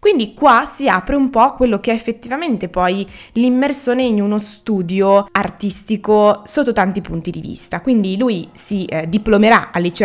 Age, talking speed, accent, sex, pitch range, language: 20-39, 160 wpm, native, female, 180-240 Hz, Italian